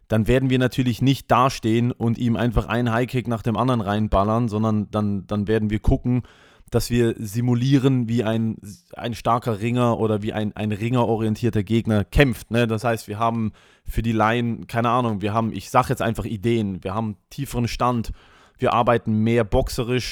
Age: 20-39